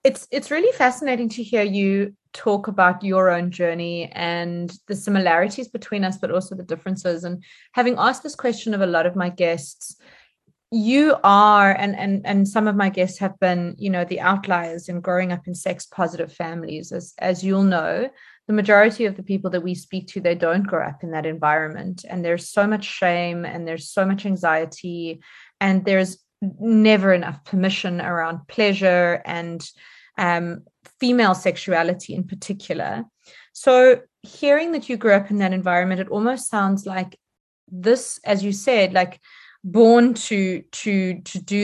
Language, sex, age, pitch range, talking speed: English, female, 30-49, 180-215 Hz, 175 wpm